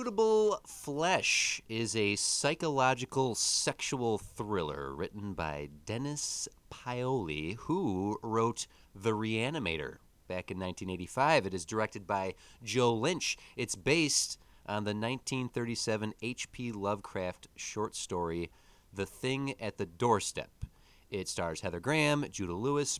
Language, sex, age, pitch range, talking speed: English, male, 30-49, 90-125 Hz, 115 wpm